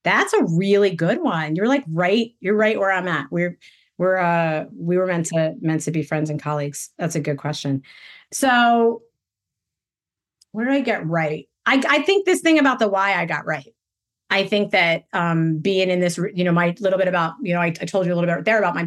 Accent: American